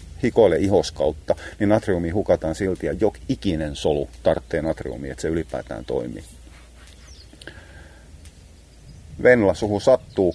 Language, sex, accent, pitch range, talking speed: Finnish, male, native, 75-85 Hz, 100 wpm